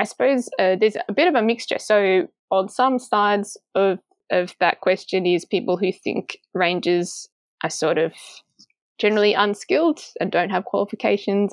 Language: English